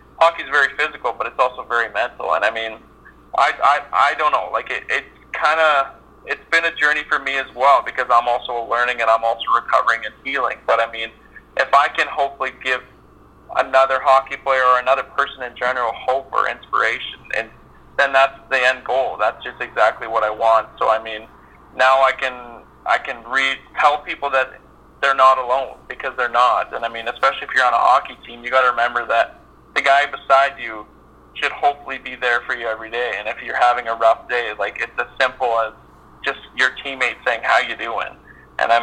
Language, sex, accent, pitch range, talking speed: English, male, American, 110-135 Hz, 210 wpm